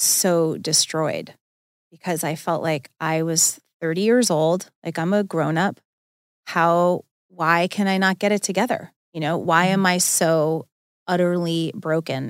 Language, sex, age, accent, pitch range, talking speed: English, female, 30-49, American, 165-200 Hz, 155 wpm